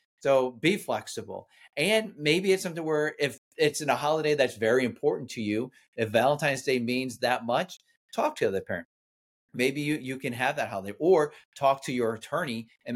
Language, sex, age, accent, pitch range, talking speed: English, male, 30-49, American, 115-150 Hz, 190 wpm